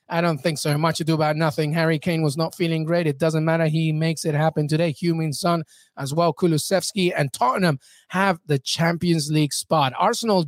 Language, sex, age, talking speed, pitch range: English, male, 30-49, 205 wpm, 160-230 Hz